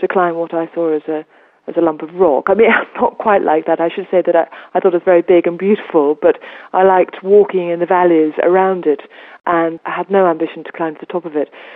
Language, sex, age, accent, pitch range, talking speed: English, female, 40-59, British, 165-220 Hz, 265 wpm